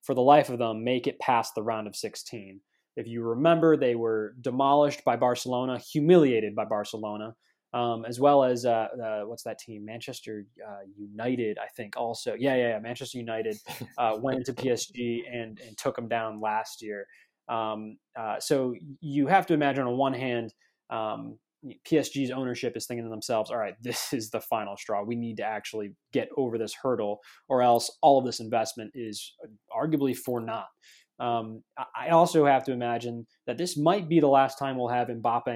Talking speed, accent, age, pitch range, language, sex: 185 wpm, American, 20-39, 115-135 Hz, English, male